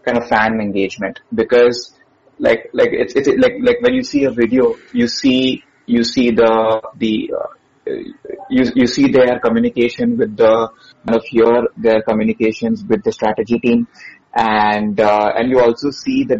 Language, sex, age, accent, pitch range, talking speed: English, male, 20-39, Indian, 110-135 Hz, 170 wpm